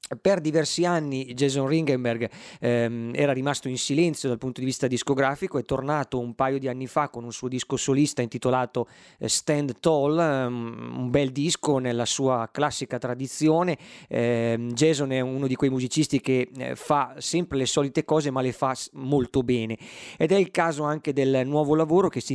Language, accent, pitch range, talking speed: Italian, native, 125-145 Hz, 175 wpm